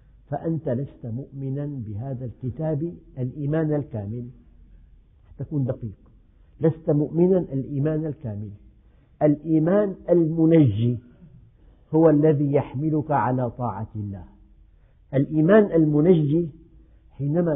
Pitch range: 115-150 Hz